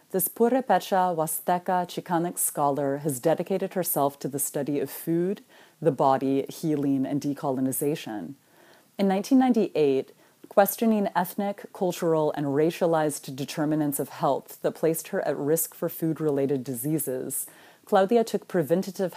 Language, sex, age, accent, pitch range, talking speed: English, female, 30-49, American, 140-175 Hz, 120 wpm